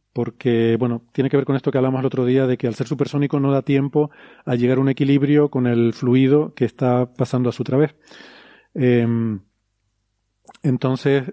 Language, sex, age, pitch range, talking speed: Spanish, male, 40-59, 125-140 Hz, 190 wpm